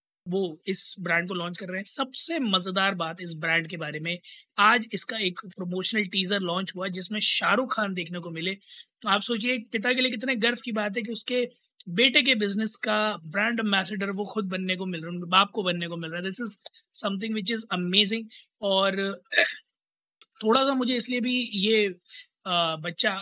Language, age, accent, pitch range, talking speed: Hindi, 20-39, native, 190-230 Hz, 200 wpm